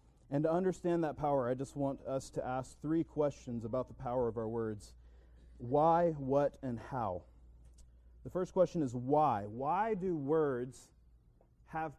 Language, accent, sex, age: English, American, male, 30-49